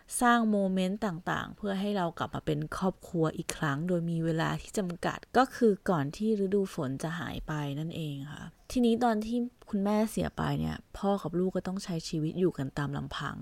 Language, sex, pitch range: Thai, female, 160-205 Hz